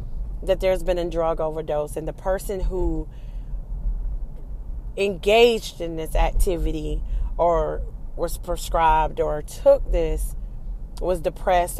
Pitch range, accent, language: 145-180 Hz, American, English